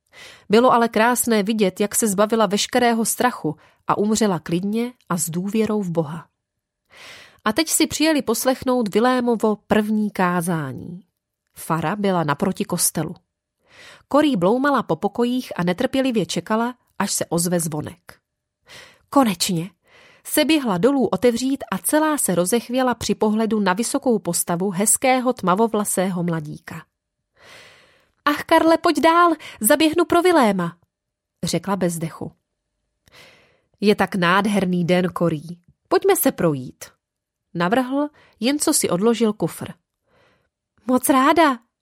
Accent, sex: native, female